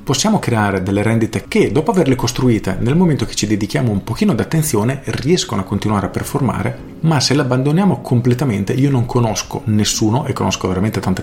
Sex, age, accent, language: male, 40-59, native, Italian